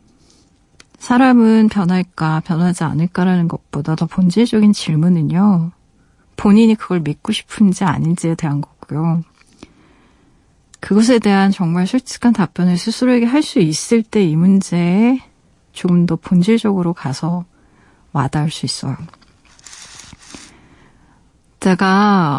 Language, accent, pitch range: Korean, native, 160-220 Hz